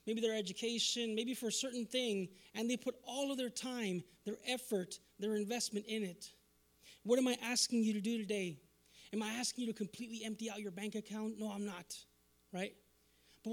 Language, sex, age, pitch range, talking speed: English, male, 30-49, 200-240 Hz, 200 wpm